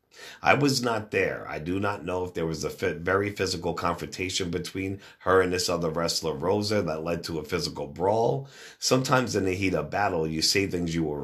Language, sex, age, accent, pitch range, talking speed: English, male, 50-69, American, 80-100 Hz, 210 wpm